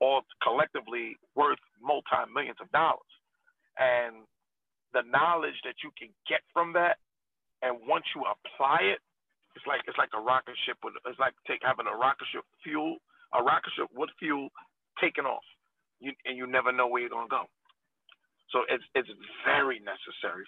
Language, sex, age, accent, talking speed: English, male, 40-59, American, 170 wpm